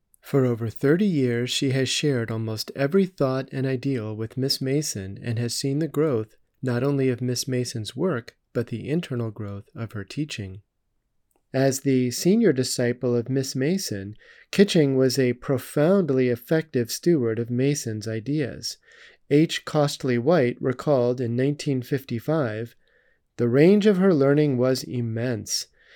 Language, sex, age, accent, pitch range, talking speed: English, male, 40-59, American, 120-150 Hz, 145 wpm